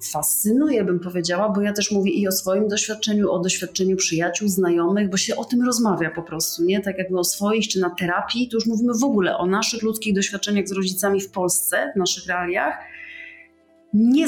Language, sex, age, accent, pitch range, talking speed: Polish, female, 30-49, native, 175-205 Hz, 200 wpm